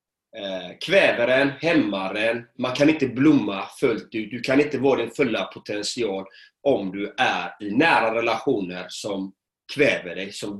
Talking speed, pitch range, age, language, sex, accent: 140 wpm, 105-165 Hz, 30-49, Swedish, male, native